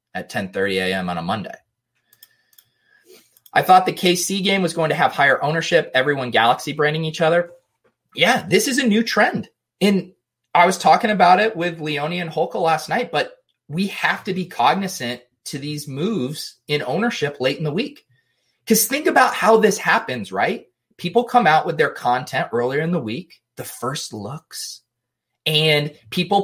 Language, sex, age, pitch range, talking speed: English, male, 30-49, 150-210 Hz, 175 wpm